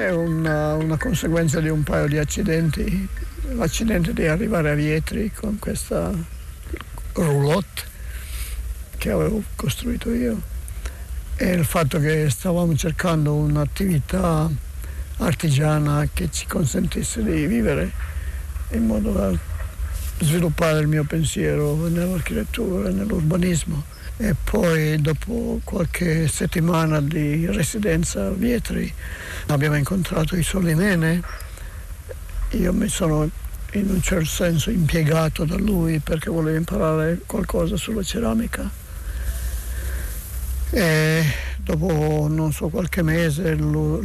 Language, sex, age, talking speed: Italian, male, 60-79, 110 wpm